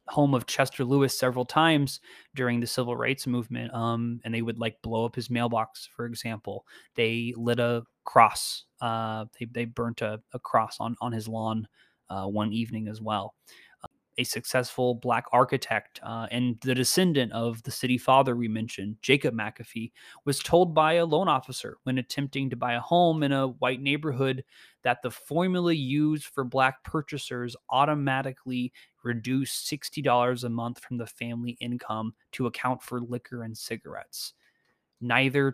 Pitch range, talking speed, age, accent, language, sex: 115-135 Hz, 165 wpm, 20-39, American, English, male